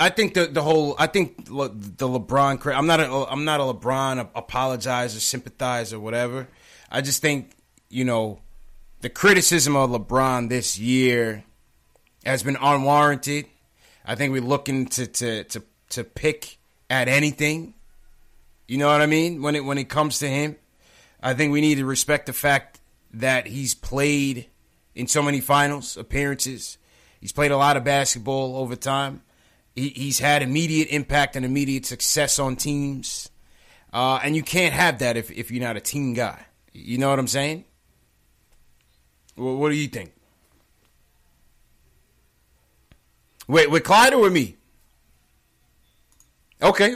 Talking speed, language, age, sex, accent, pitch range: 155 wpm, English, 30-49, male, American, 110-145 Hz